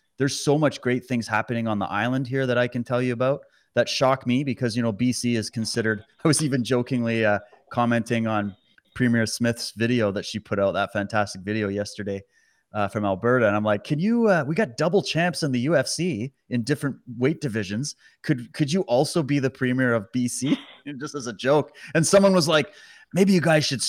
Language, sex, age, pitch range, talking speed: English, male, 30-49, 115-150 Hz, 210 wpm